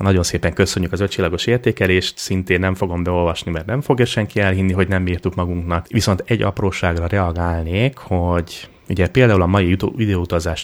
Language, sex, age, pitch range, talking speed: Hungarian, male, 30-49, 85-100 Hz, 165 wpm